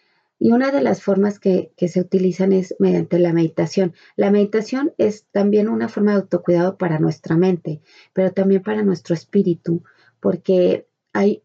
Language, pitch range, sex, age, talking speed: Spanish, 180-210 Hz, female, 30-49, 160 wpm